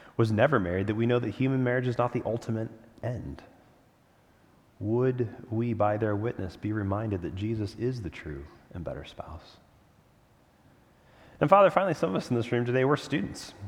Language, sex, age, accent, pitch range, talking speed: English, male, 30-49, American, 105-150 Hz, 180 wpm